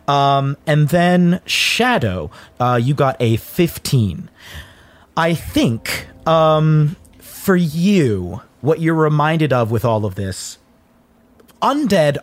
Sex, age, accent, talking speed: male, 30-49, American, 115 wpm